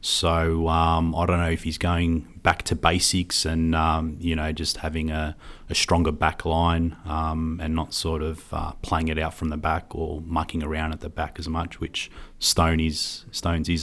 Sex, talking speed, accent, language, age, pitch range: male, 200 wpm, Australian, English, 30-49, 80-90 Hz